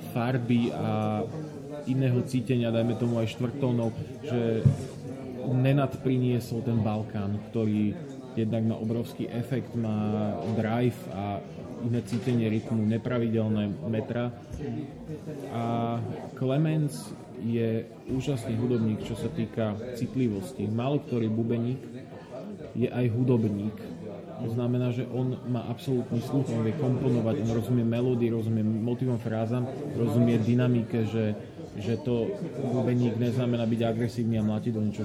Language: Slovak